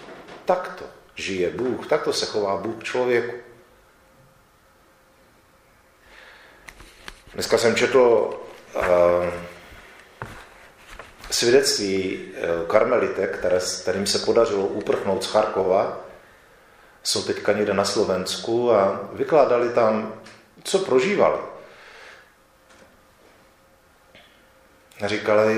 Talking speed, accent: 75 wpm, native